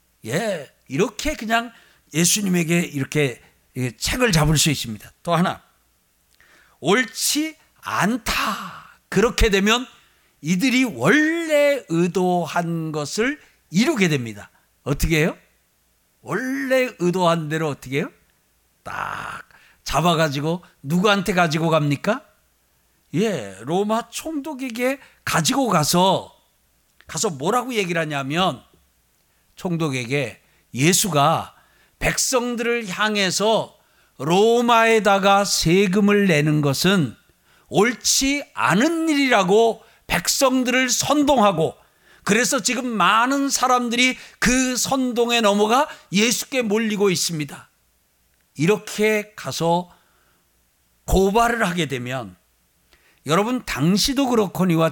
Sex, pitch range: male, 145-235 Hz